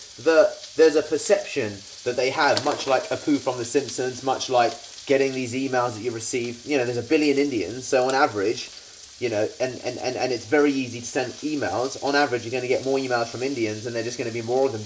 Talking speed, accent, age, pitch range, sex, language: 245 wpm, British, 20-39, 125-165 Hz, male, English